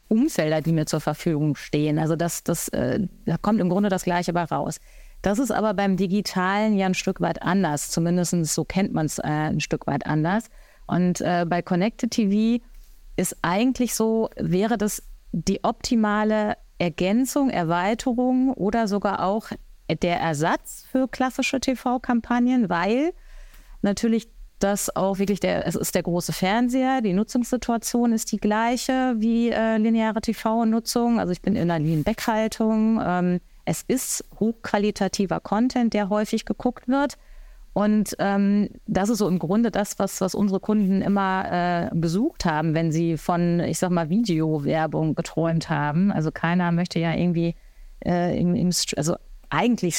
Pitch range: 175-225 Hz